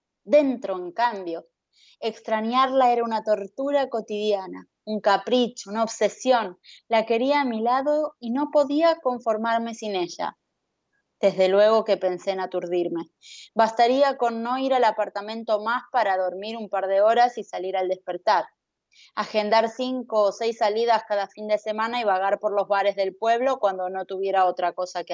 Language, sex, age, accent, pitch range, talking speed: Spanish, female, 20-39, Argentinian, 190-255 Hz, 160 wpm